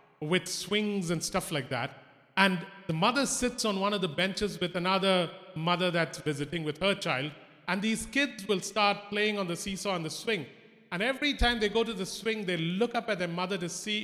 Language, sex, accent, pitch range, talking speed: English, male, Indian, 165-220 Hz, 220 wpm